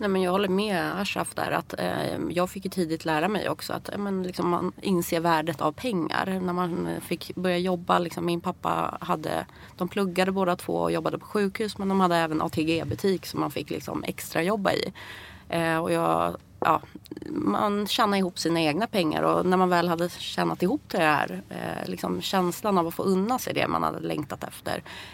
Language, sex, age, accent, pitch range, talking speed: English, female, 30-49, Swedish, 155-185 Hz, 180 wpm